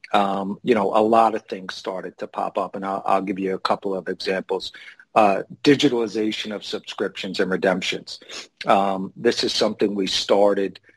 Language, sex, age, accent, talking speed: English, male, 50-69, American, 175 wpm